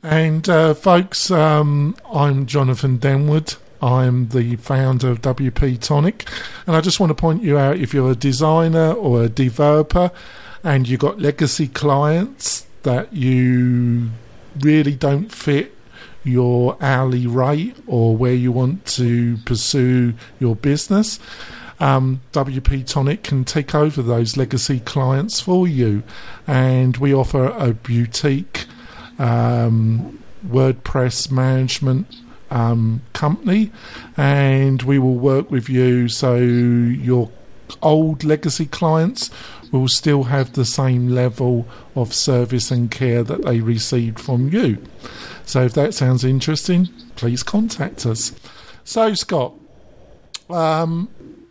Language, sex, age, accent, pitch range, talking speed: English, male, 50-69, British, 125-155 Hz, 125 wpm